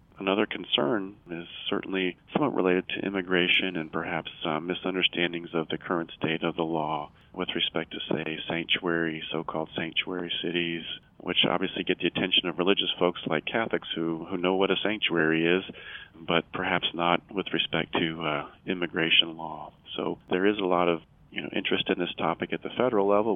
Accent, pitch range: American, 80-90 Hz